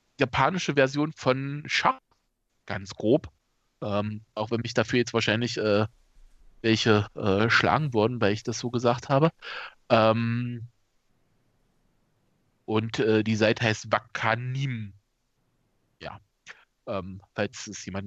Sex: male